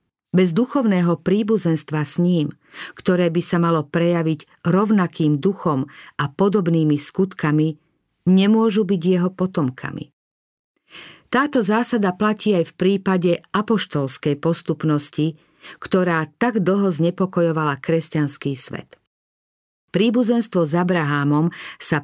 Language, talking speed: Slovak, 100 wpm